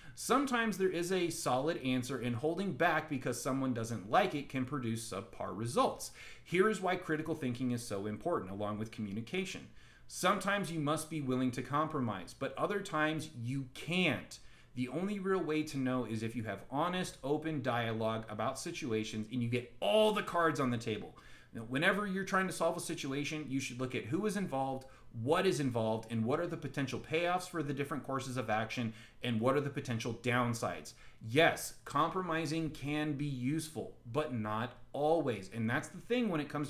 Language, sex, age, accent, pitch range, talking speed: English, male, 30-49, American, 120-160 Hz, 190 wpm